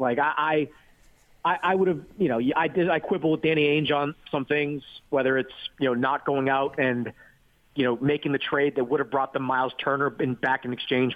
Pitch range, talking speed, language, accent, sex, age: 130-145 Hz, 225 wpm, English, American, male, 30-49